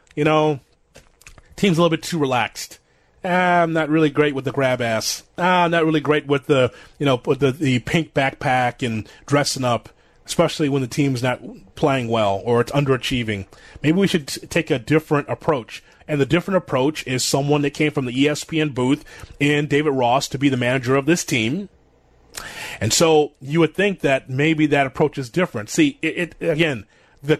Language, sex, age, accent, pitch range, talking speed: English, male, 30-49, American, 130-165 Hz, 195 wpm